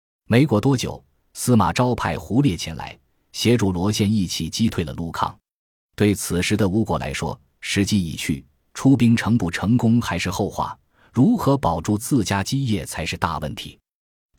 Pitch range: 90-115 Hz